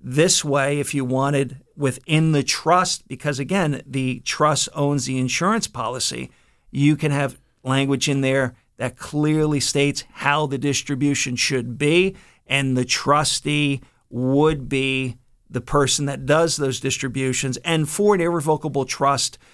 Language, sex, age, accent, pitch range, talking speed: English, male, 50-69, American, 130-145 Hz, 140 wpm